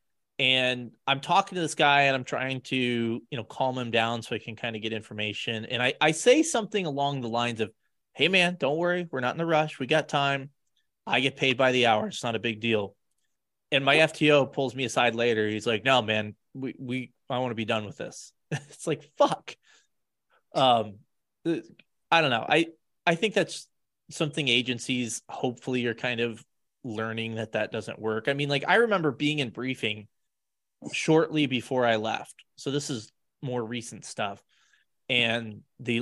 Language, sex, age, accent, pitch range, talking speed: English, male, 20-39, American, 115-145 Hz, 195 wpm